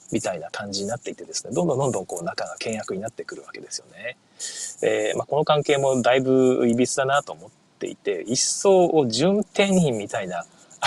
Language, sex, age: Japanese, male, 20-39